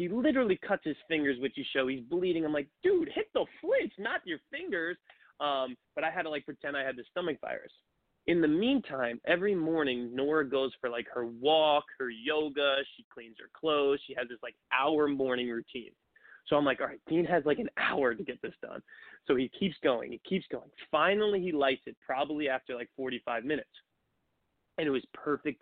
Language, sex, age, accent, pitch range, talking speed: English, male, 20-39, American, 135-195 Hz, 210 wpm